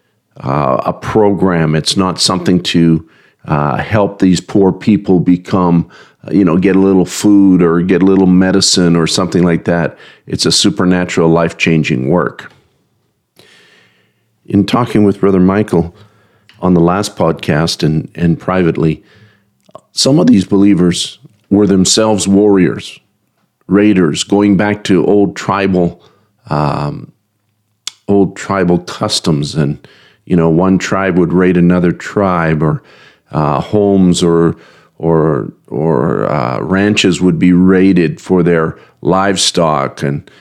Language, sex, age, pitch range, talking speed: English, male, 50-69, 85-100 Hz, 130 wpm